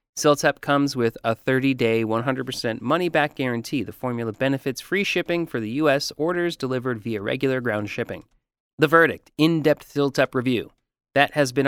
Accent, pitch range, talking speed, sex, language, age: American, 115-150 Hz, 155 wpm, male, English, 30-49